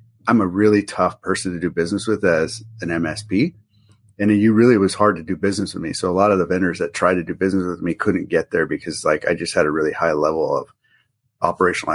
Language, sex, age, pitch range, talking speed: English, male, 30-49, 90-110 Hz, 245 wpm